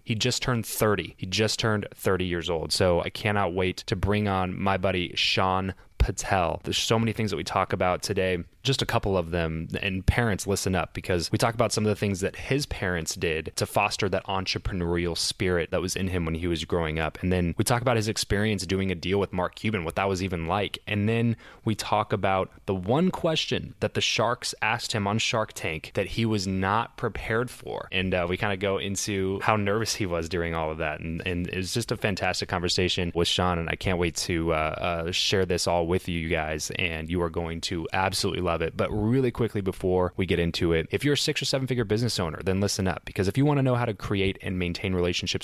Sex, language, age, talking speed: male, English, 20-39, 245 wpm